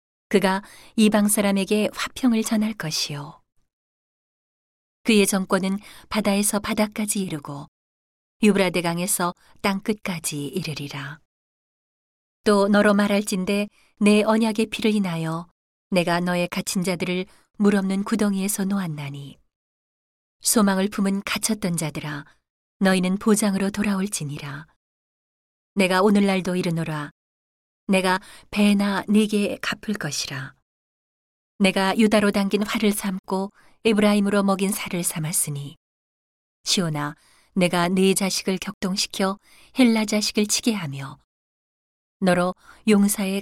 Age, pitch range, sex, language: 40-59, 170-205 Hz, female, Korean